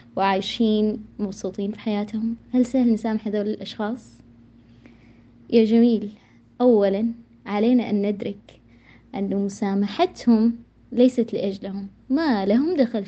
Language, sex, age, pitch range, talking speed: Arabic, female, 20-39, 200-245 Hz, 100 wpm